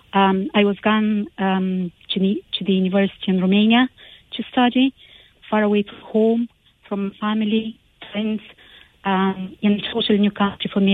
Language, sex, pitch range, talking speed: English, female, 190-215 Hz, 155 wpm